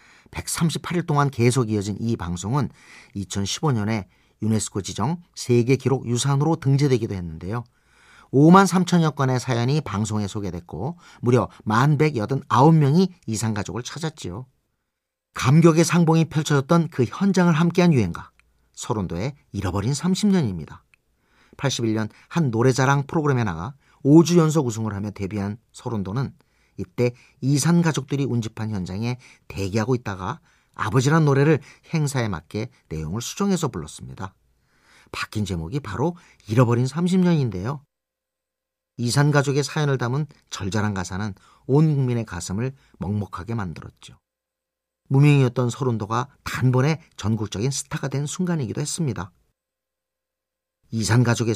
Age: 40-59